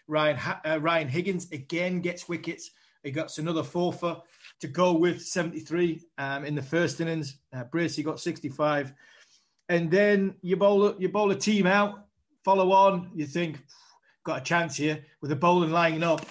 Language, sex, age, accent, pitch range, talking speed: English, male, 30-49, British, 150-180 Hz, 175 wpm